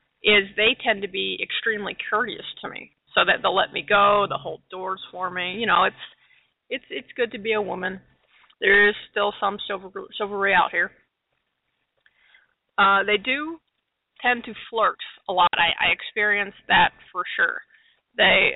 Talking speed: 170 wpm